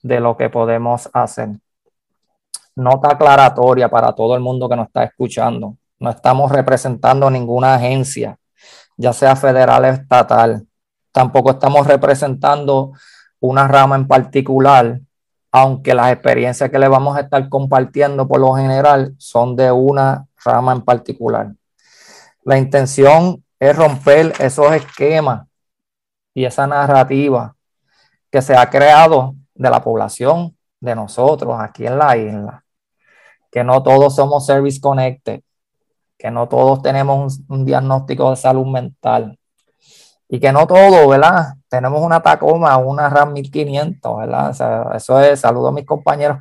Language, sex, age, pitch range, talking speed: Spanish, male, 20-39, 130-145 Hz, 135 wpm